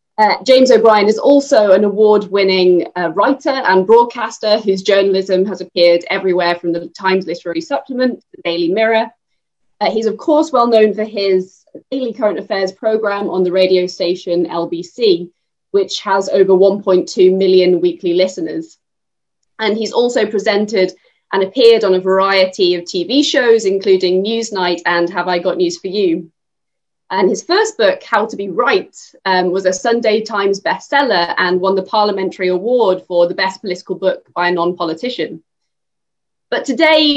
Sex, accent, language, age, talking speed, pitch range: female, British, English, 20-39, 155 wpm, 180-220 Hz